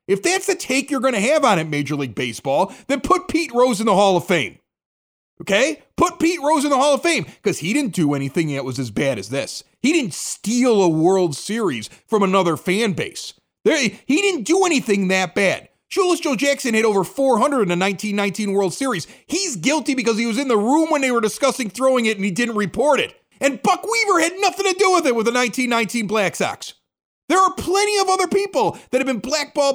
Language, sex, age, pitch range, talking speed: English, male, 40-59, 180-280 Hz, 225 wpm